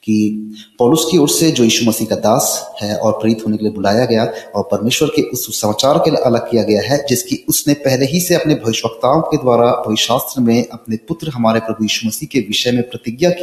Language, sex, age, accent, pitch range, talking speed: Hindi, male, 30-49, native, 110-140 Hz, 140 wpm